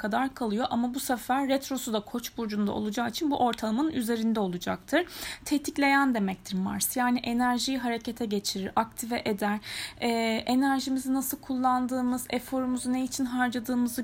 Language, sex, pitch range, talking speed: Turkish, female, 230-280 Hz, 135 wpm